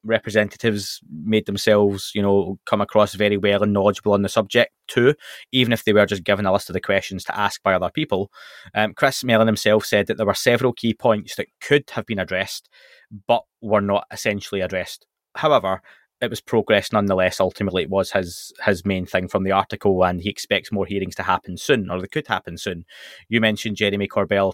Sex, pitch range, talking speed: male, 100-110 Hz, 205 wpm